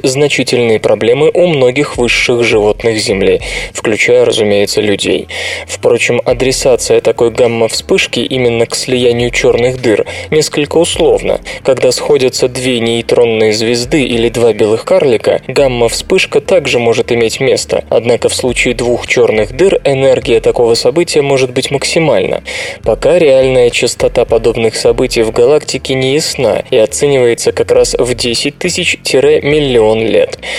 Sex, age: male, 20-39